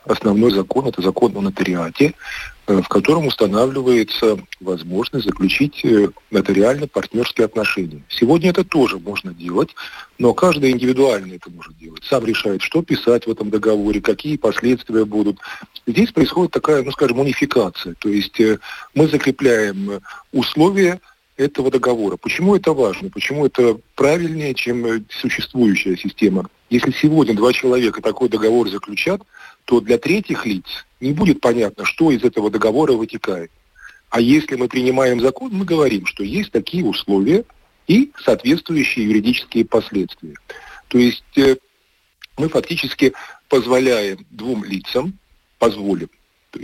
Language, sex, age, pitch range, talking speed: Russian, male, 40-59, 110-145 Hz, 125 wpm